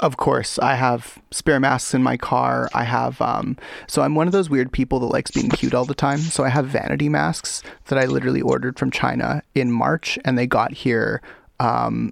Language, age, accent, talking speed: English, 30-49, American, 220 wpm